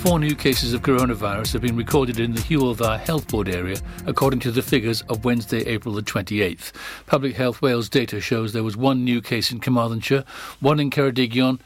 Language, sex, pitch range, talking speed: English, male, 115-140 Hz, 195 wpm